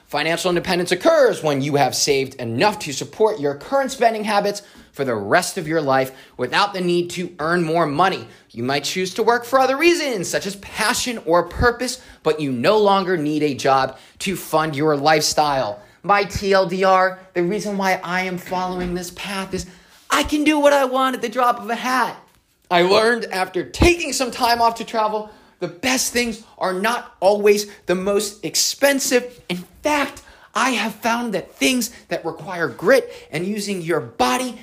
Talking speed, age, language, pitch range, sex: 185 wpm, 20-39, English, 175-235 Hz, male